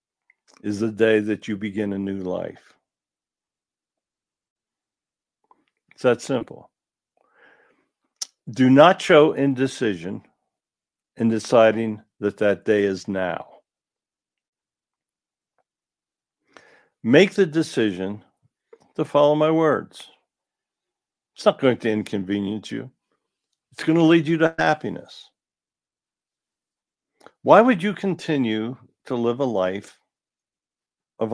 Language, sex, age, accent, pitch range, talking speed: English, male, 60-79, American, 105-145 Hz, 100 wpm